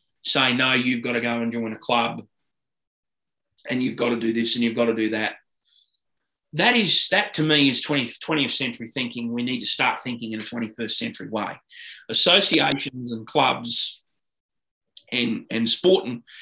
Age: 30-49